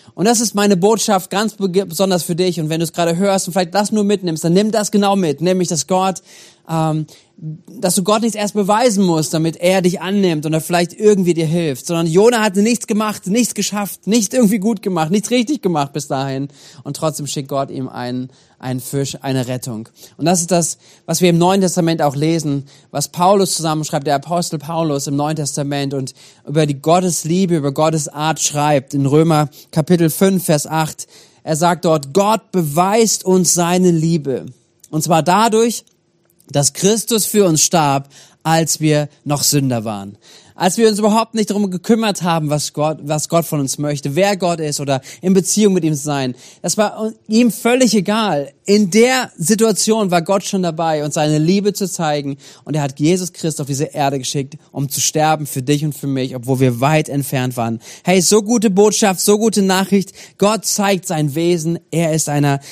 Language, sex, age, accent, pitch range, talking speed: German, male, 30-49, German, 145-195 Hz, 195 wpm